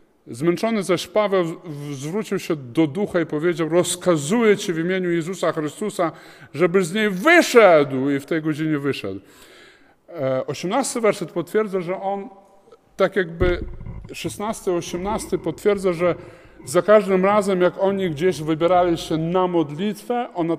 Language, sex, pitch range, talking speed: Polish, male, 150-190 Hz, 130 wpm